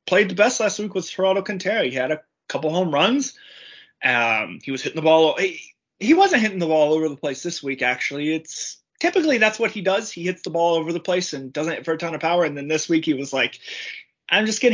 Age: 20-39